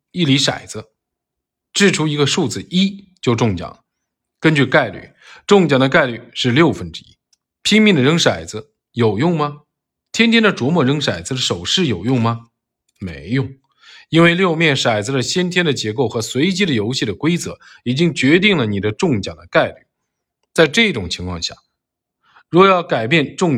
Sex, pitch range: male, 115-170 Hz